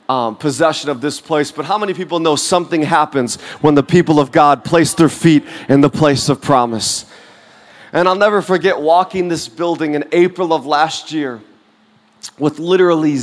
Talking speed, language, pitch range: 175 wpm, English, 155-190 Hz